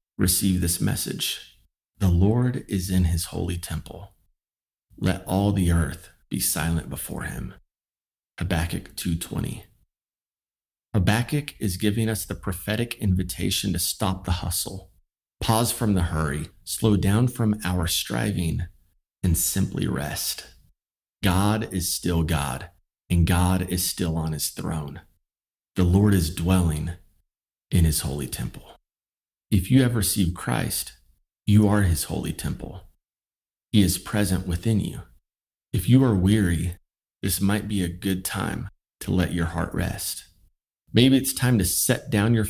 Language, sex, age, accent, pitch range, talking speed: English, male, 30-49, American, 85-105 Hz, 140 wpm